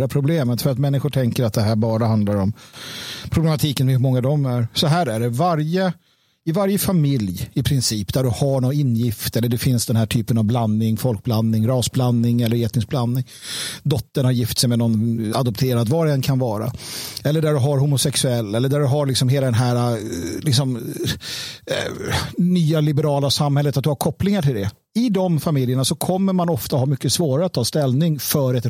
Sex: male